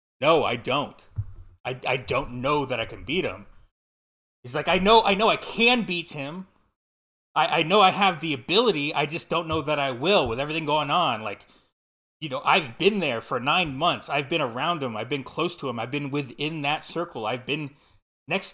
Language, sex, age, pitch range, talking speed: English, male, 30-49, 105-150 Hz, 215 wpm